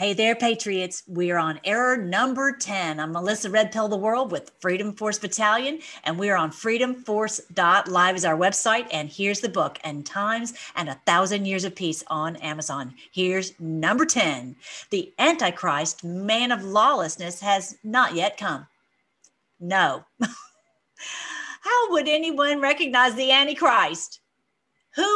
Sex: female